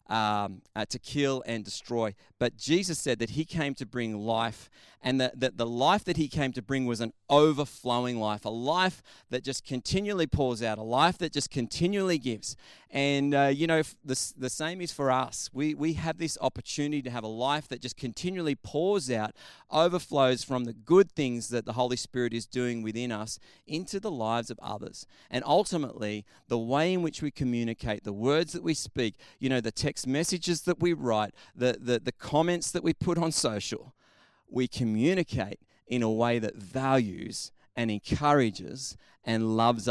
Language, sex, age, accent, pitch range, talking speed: English, male, 30-49, Australian, 115-150 Hz, 190 wpm